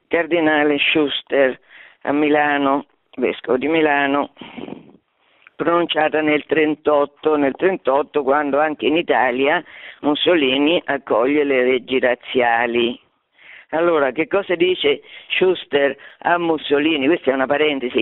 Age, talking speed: 50-69, 105 wpm